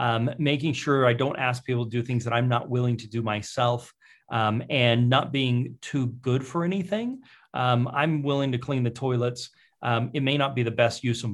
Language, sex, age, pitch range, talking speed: English, male, 30-49, 115-135 Hz, 215 wpm